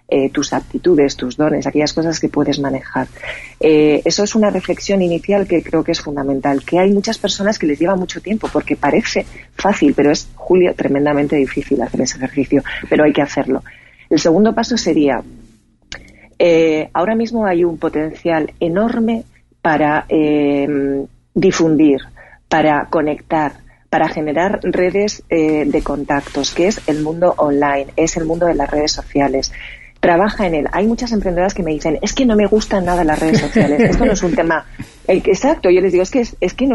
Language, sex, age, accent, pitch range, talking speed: Spanish, female, 40-59, Spanish, 145-205 Hz, 185 wpm